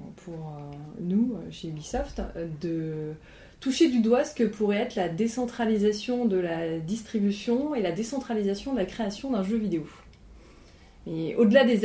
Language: French